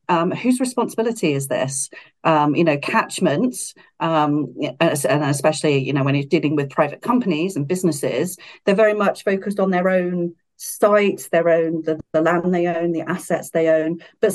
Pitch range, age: 150-185 Hz, 40-59